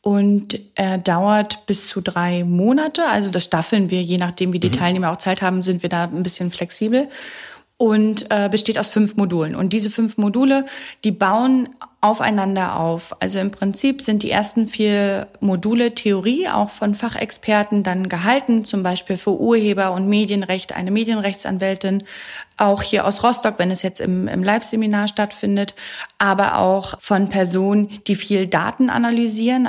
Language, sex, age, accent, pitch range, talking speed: German, female, 30-49, German, 190-230 Hz, 160 wpm